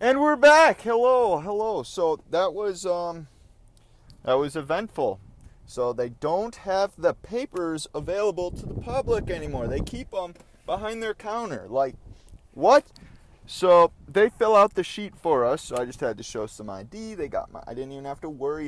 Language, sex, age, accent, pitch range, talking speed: English, male, 30-49, American, 115-190 Hz, 180 wpm